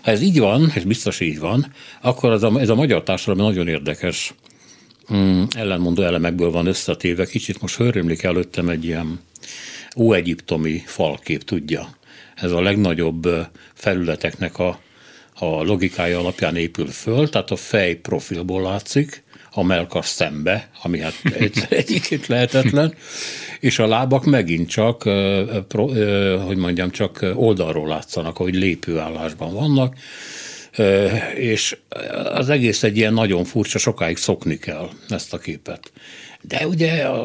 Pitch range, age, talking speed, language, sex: 90-125 Hz, 60-79, 130 wpm, Hungarian, male